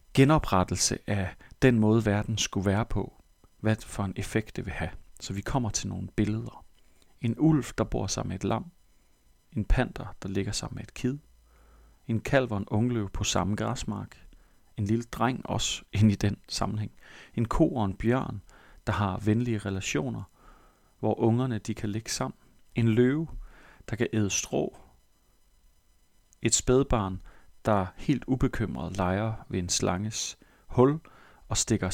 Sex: male